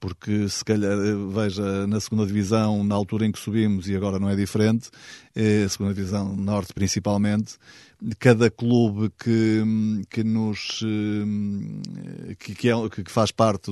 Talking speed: 150 wpm